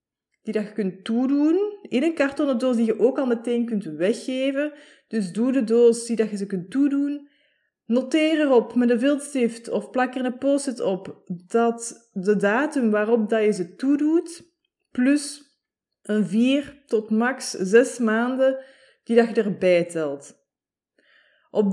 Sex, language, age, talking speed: female, Dutch, 20-39, 150 wpm